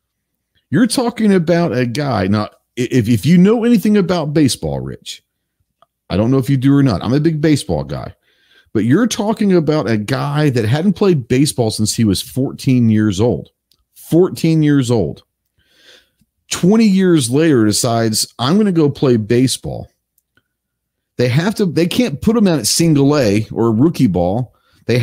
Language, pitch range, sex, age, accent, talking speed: English, 110-165 Hz, male, 40-59, American, 170 wpm